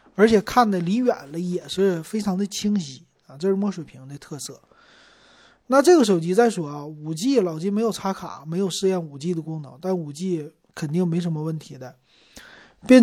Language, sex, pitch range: Chinese, male, 160-210 Hz